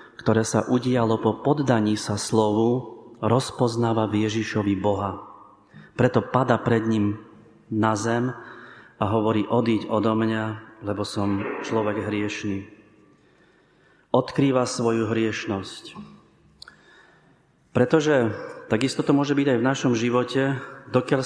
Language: Slovak